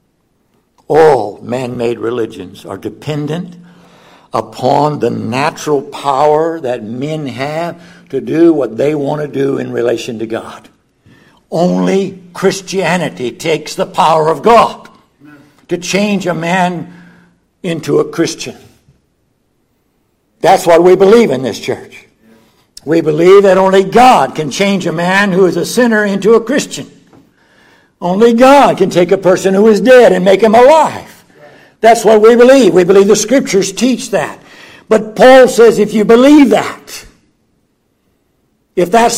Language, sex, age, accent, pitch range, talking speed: English, male, 60-79, American, 165-230 Hz, 140 wpm